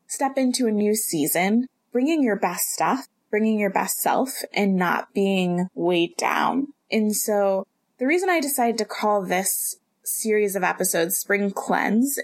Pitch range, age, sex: 190-245 Hz, 20-39, female